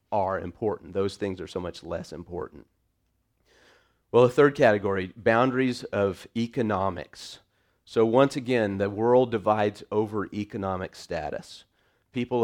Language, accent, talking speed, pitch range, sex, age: English, American, 125 wpm, 95-120 Hz, male, 40-59